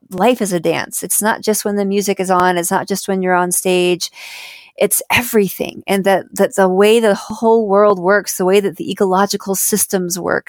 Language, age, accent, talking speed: English, 40-59, American, 210 wpm